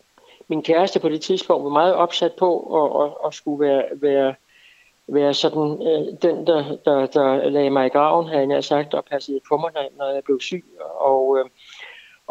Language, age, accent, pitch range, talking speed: Danish, 60-79, native, 135-170 Hz, 195 wpm